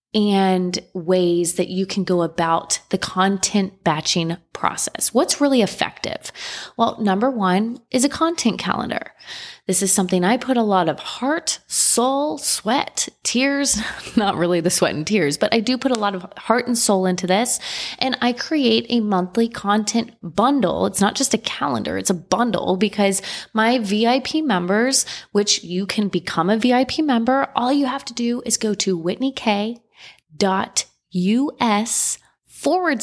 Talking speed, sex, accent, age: 165 wpm, female, American, 20-39